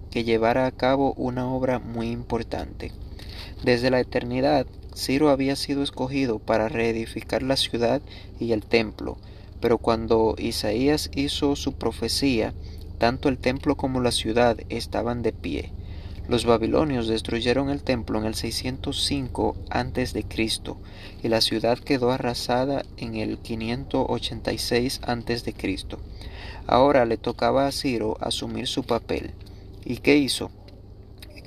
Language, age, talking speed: Spanish, 30-49, 135 wpm